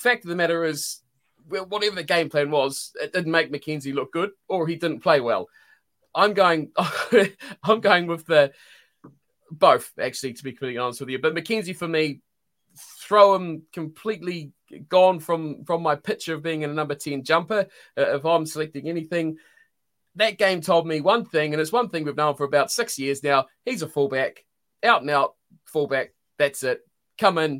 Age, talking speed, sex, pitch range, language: 20-39, 190 wpm, male, 155-215 Hz, English